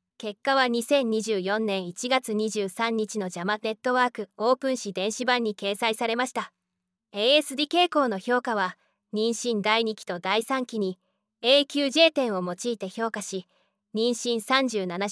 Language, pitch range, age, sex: Japanese, 200-250 Hz, 20-39, female